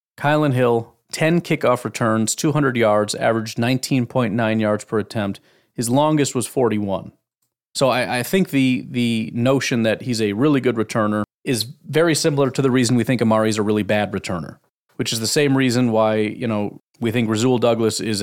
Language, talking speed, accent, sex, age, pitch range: English, 180 wpm, American, male, 30-49, 110-135 Hz